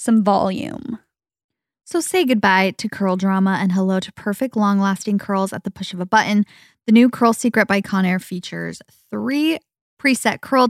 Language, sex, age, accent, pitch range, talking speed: English, female, 20-39, American, 180-225 Hz, 170 wpm